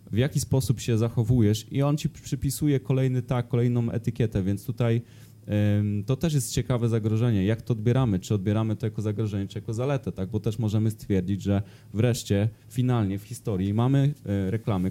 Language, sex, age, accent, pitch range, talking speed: Polish, male, 20-39, native, 105-120 Hz, 175 wpm